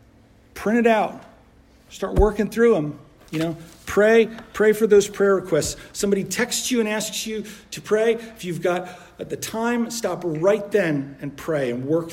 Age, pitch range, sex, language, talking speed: 50-69, 150-215 Hz, male, English, 180 wpm